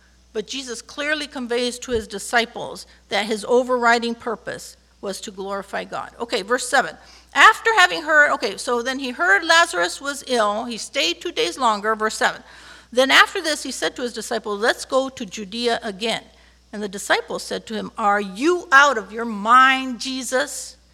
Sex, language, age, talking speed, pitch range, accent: female, English, 50-69, 180 wpm, 220-280 Hz, American